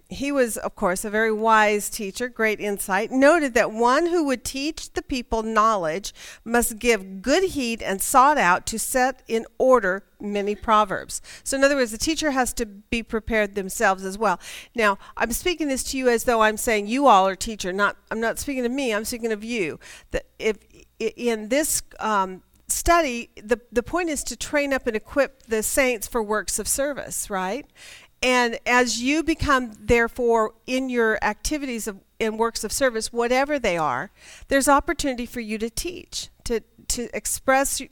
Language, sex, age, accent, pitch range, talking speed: English, female, 40-59, American, 215-270 Hz, 180 wpm